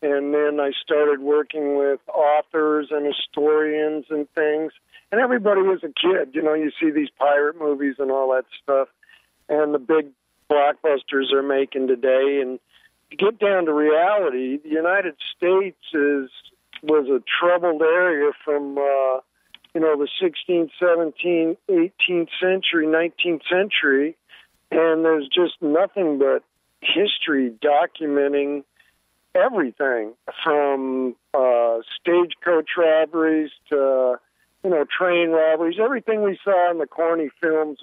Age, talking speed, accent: 50-69, 130 wpm, American